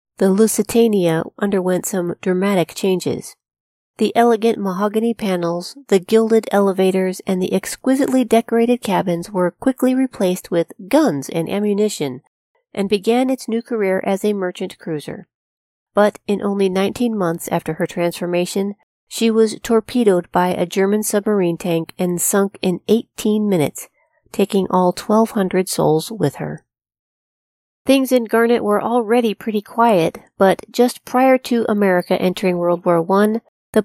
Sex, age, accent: female, 40-59, American